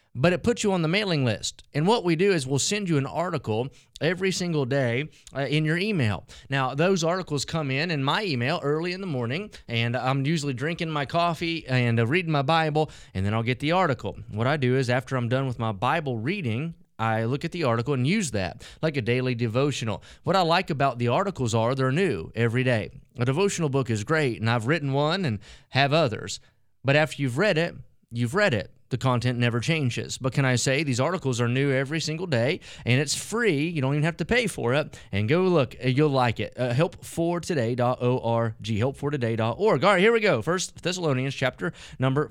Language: English